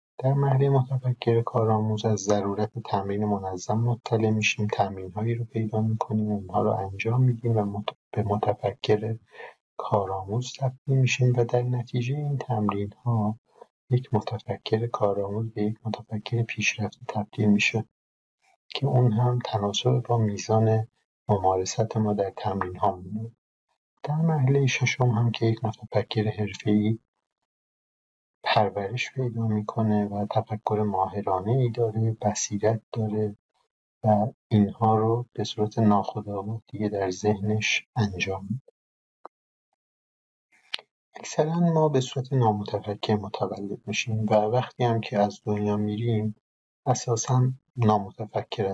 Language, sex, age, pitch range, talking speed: Persian, male, 50-69, 105-120 Hz, 120 wpm